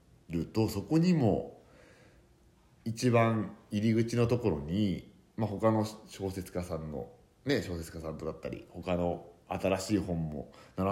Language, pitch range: Japanese, 85-115 Hz